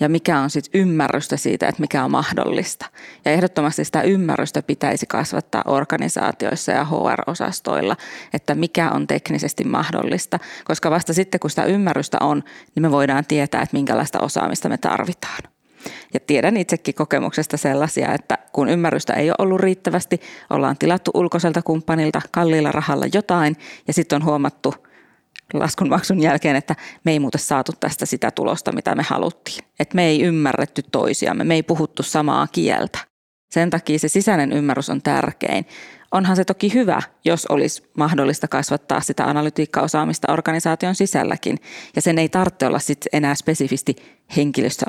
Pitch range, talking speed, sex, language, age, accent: 145-175 Hz, 150 wpm, female, Finnish, 30-49, native